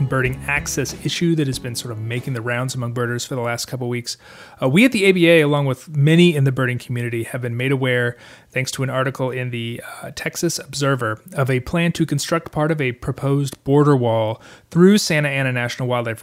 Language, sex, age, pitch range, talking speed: English, male, 30-49, 120-150 Hz, 220 wpm